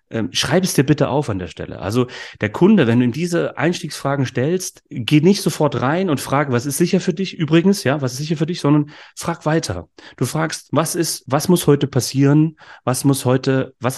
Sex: male